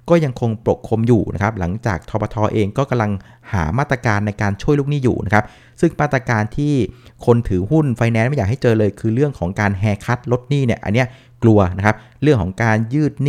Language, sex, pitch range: Thai, male, 105-135 Hz